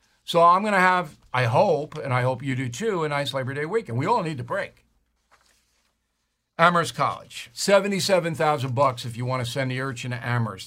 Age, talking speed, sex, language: 60-79, 195 wpm, male, English